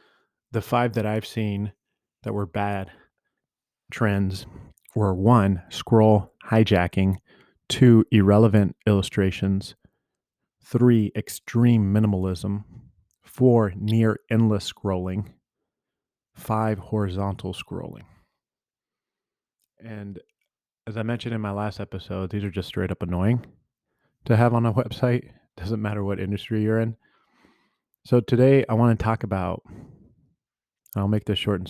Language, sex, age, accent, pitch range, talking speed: English, male, 30-49, American, 95-115 Hz, 120 wpm